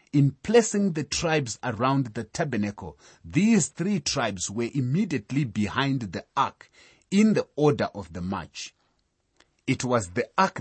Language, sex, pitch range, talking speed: English, male, 105-150 Hz, 140 wpm